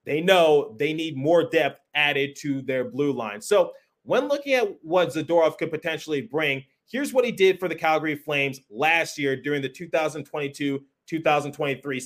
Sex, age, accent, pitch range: male, 30-49, American, 145-195 Hz